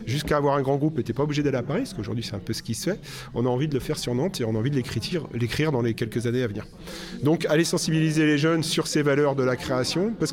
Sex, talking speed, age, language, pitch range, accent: male, 310 wpm, 40-59, French, 115-155 Hz, French